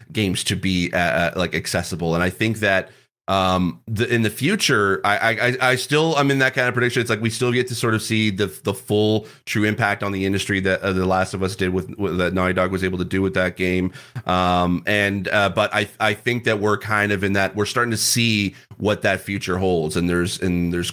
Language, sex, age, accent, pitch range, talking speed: English, male, 30-49, American, 95-105 Hz, 245 wpm